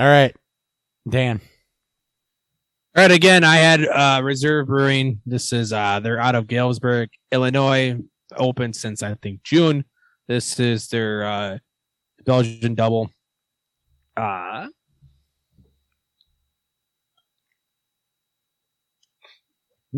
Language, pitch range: English, 105-130 Hz